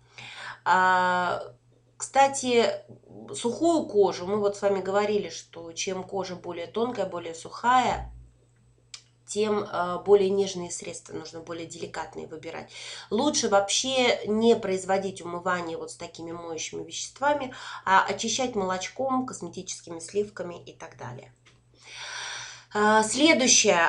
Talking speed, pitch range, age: 105 wpm, 170-225 Hz, 20-39